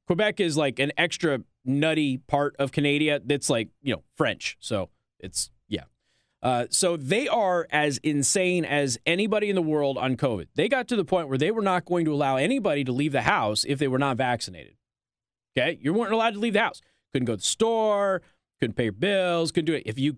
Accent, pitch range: American, 130-200 Hz